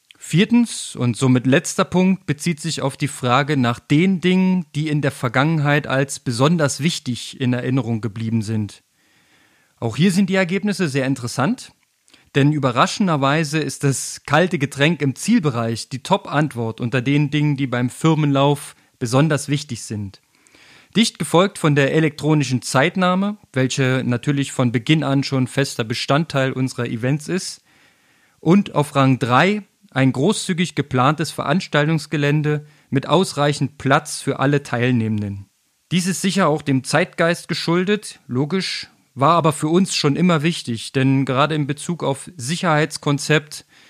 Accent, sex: German, male